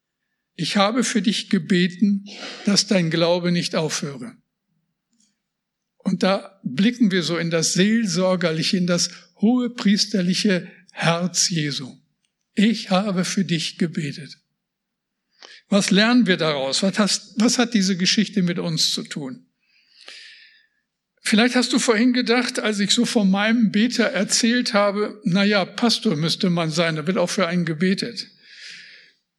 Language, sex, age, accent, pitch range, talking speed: German, male, 60-79, German, 185-225 Hz, 135 wpm